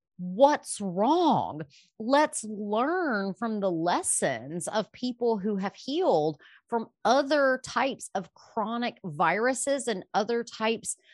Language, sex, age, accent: English, female, 30-49, American